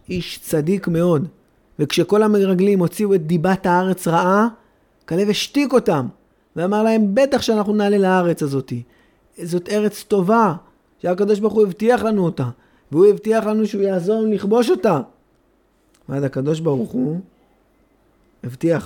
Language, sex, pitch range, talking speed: Hebrew, male, 140-210 Hz, 130 wpm